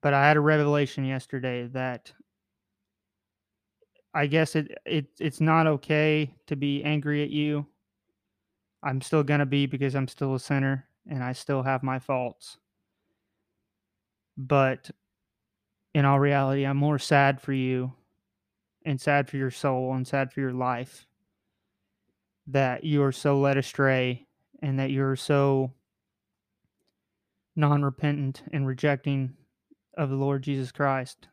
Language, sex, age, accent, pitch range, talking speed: English, male, 30-49, American, 120-145 Hz, 140 wpm